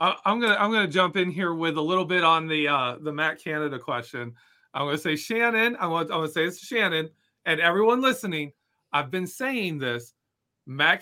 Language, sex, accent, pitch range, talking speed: English, male, American, 155-210 Hz, 205 wpm